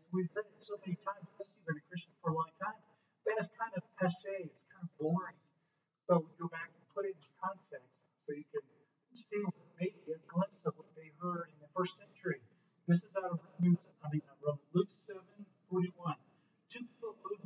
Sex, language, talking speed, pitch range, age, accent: male, English, 210 wpm, 145-185 Hz, 50-69, American